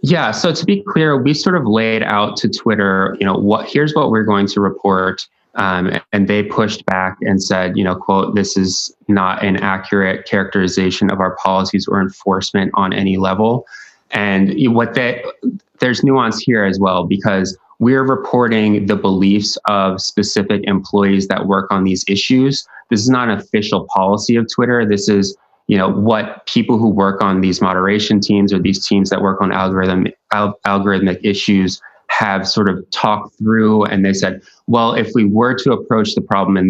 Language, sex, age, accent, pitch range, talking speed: English, male, 20-39, American, 95-110 Hz, 185 wpm